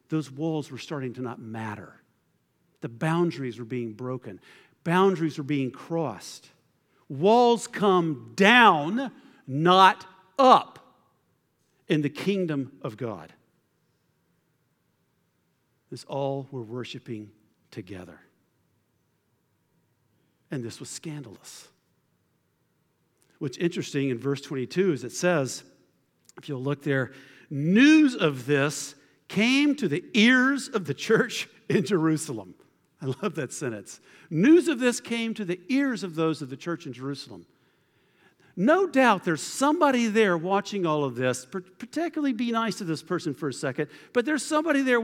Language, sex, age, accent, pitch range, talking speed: English, male, 50-69, American, 130-210 Hz, 130 wpm